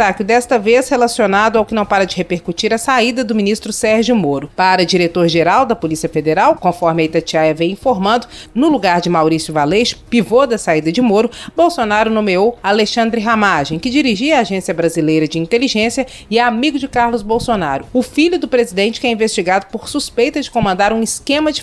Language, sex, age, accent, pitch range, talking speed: Portuguese, female, 30-49, Brazilian, 185-245 Hz, 185 wpm